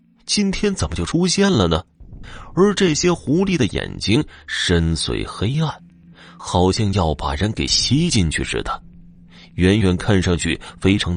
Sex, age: male, 30-49